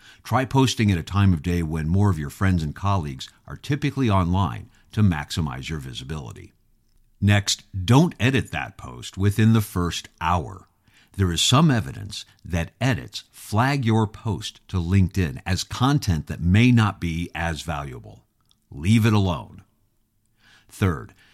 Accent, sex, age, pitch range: American, male, 50-69, 85-115 Hz